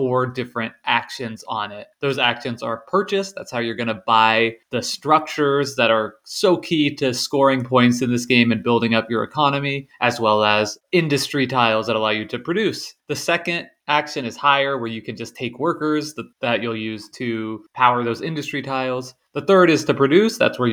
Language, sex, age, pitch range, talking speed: English, male, 20-39, 115-140 Hz, 200 wpm